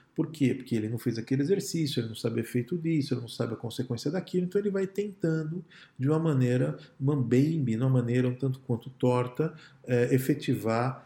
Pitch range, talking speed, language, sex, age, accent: 125-150 Hz, 195 wpm, Portuguese, male, 50-69, Brazilian